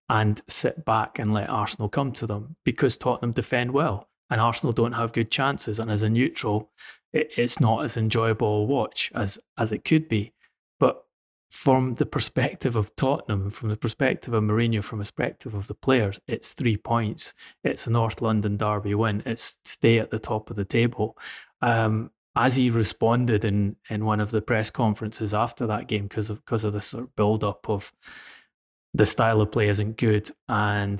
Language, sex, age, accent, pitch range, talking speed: English, male, 30-49, British, 105-125 Hz, 190 wpm